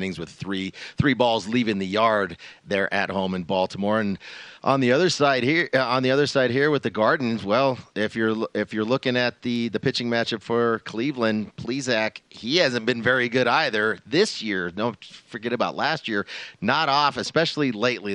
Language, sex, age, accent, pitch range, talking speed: English, male, 30-49, American, 100-125 Hz, 190 wpm